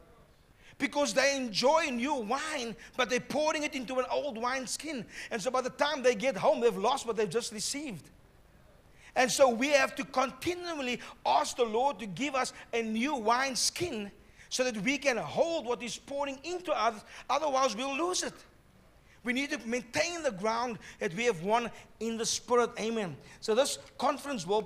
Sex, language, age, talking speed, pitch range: male, English, 50-69, 185 wpm, 210-270 Hz